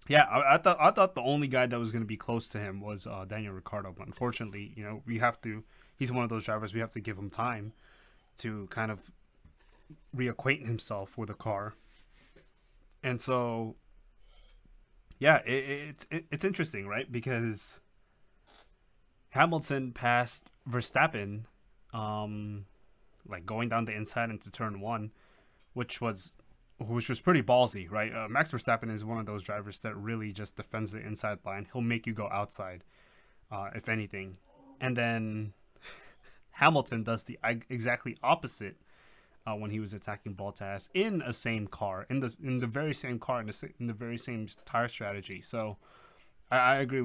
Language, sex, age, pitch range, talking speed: English, male, 20-39, 105-120 Hz, 165 wpm